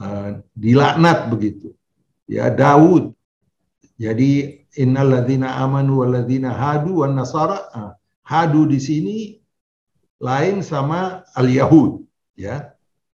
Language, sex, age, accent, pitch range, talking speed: Indonesian, male, 60-79, native, 130-185 Hz, 80 wpm